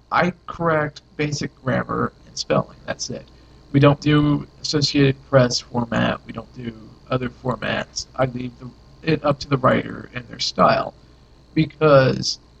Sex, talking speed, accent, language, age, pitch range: male, 145 wpm, American, English, 50-69, 120-145 Hz